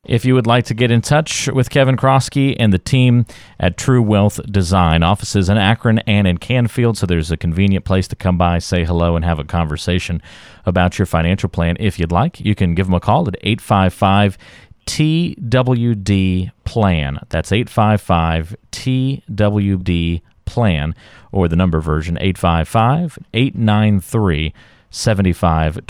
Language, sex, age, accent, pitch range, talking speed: English, male, 40-59, American, 90-125 Hz, 145 wpm